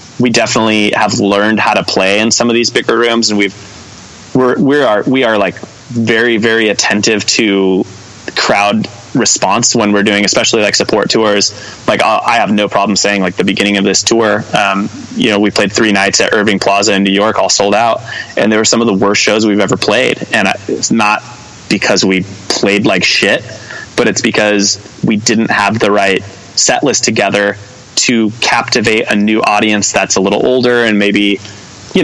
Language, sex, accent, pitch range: English, male, American, 100-115 Hz